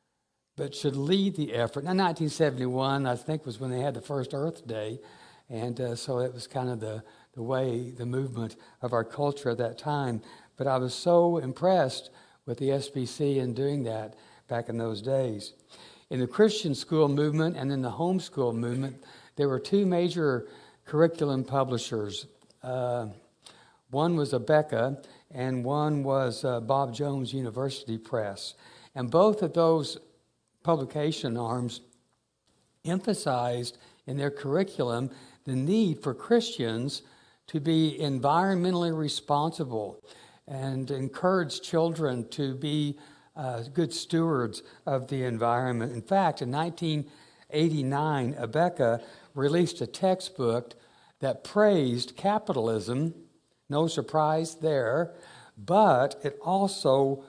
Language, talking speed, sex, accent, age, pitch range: English, 130 wpm, male, American, 60-79, 125-160 Hz